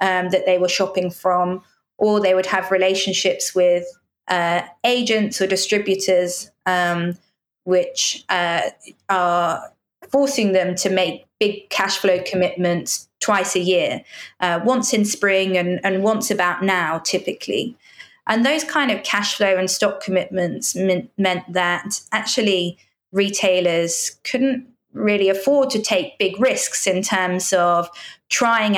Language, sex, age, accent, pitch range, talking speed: English, female, 20-39, British, 180-210 Hz, 135 wpm